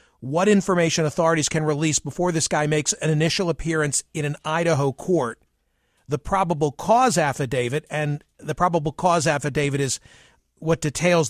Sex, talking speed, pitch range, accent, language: male, 150 wpm, 145-175 Hz, American, English